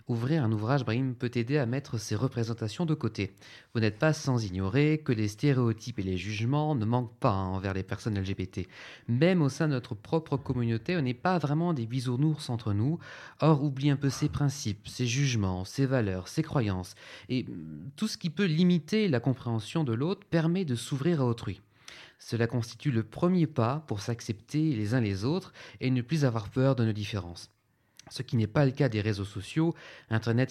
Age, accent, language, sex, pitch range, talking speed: 30-49, French, French, male, 110-150 Hz, 200 wpm